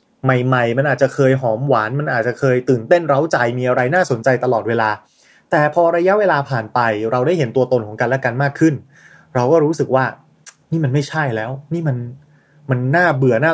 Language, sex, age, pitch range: Thai, male, 20-39, 125-160 Hz